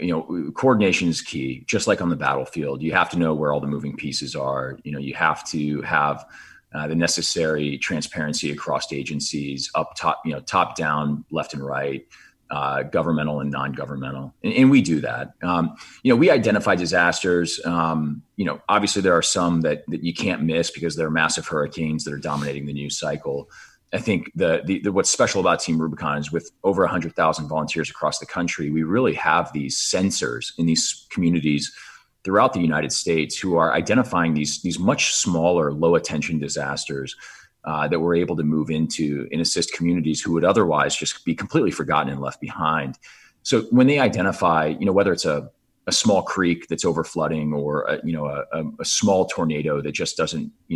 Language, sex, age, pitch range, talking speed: English, male, 30-49, 70-85 Hz, 200 wpm